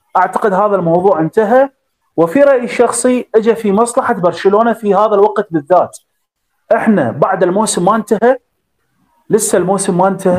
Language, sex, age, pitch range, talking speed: Arabic, male, 30-49, 180-240 Hz, 140 wpm